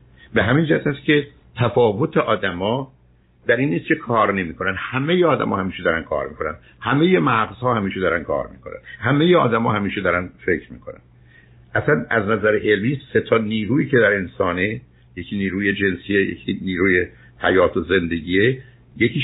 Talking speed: 160 wpm